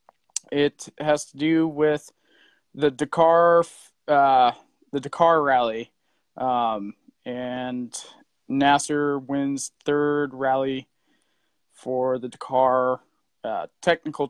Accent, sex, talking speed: American, male, 90 wpm